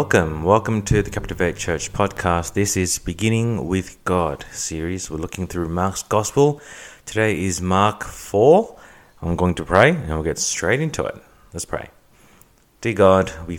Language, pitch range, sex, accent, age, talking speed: English, 80-100 Hz, male, Australian, 30-49, 165 wpm